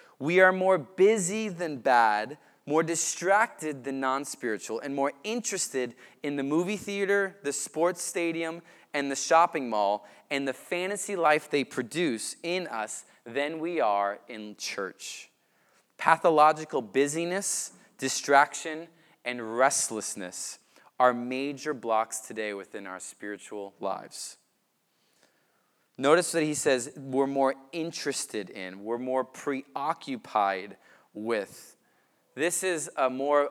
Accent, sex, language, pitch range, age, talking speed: American, male, English, 120-165 Hz, 20-39, 115 wpm